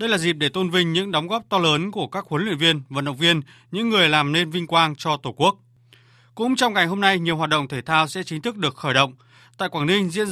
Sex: male